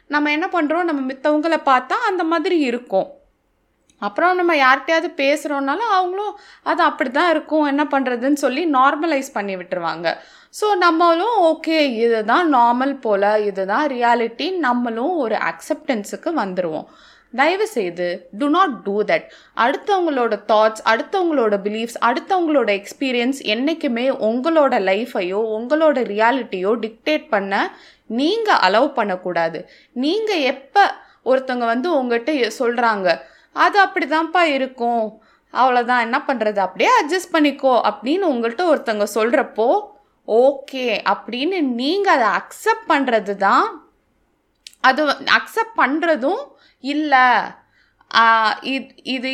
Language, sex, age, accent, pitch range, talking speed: Tamil, female, 20-39, native, 230-320 Hz, 105 wpm